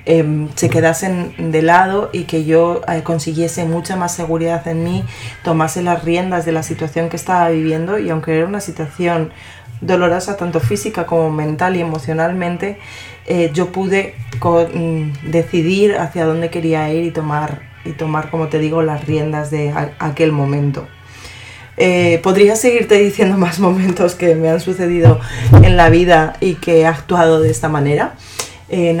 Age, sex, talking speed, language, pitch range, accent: 30-49, female, 165 wpm, Spanish, 155-175 Hz, Spanish